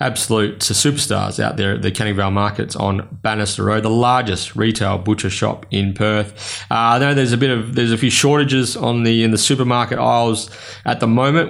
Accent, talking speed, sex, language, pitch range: Australian, 205 wpm, male, English, 100-120 Hz